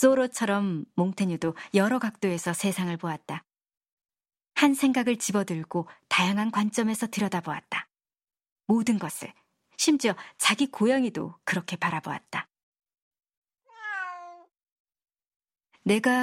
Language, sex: Korean, male